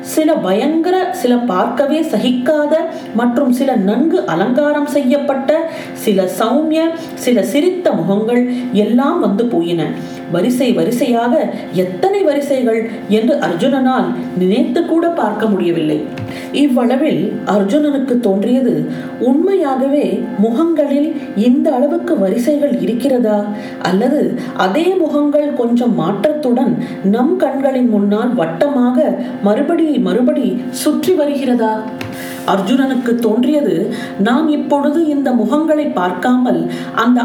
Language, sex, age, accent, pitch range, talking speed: Tamil, female, 40-59, native, 210-295 Hz, 95 wpm